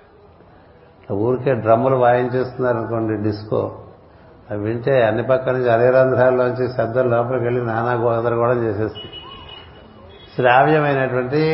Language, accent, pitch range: Telugu, native, 110-130 Hz